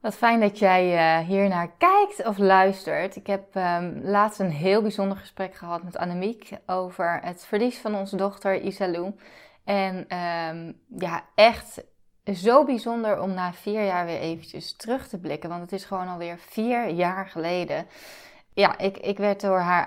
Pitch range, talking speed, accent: 180-205 Hz, 165 wpm, Dutch